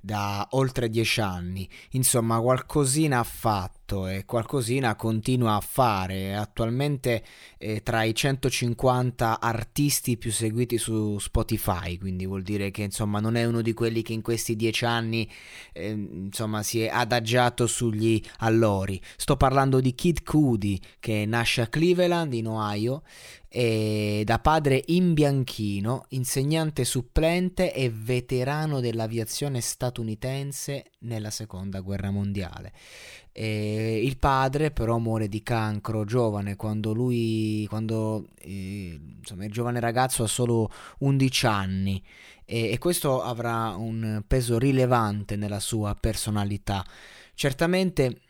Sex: male